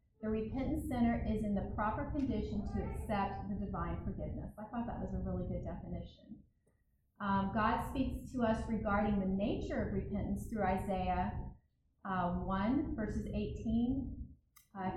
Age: 30-49